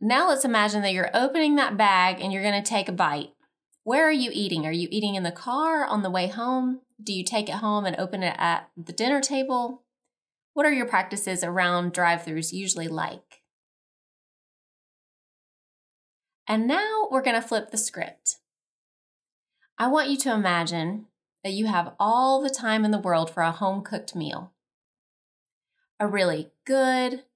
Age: 20-39